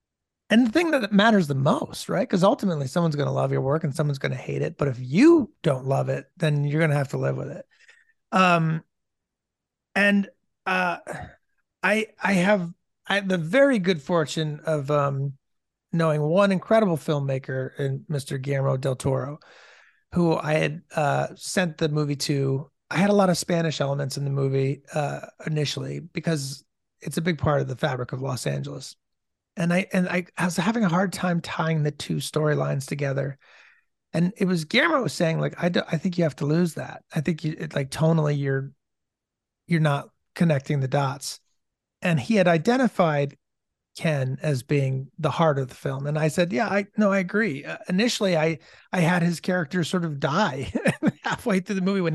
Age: 30-49